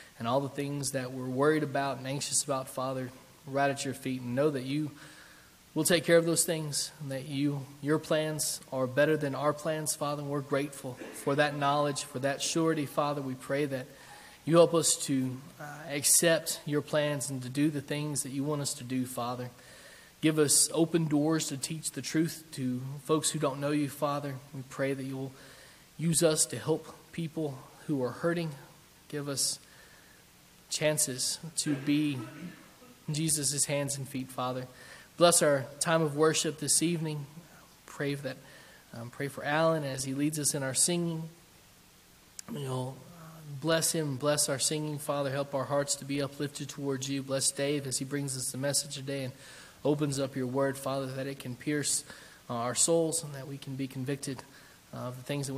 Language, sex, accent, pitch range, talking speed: English, male, American, 135-155 Hz, 185 wpm